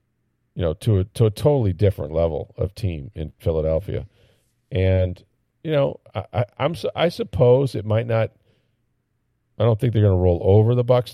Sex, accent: male, American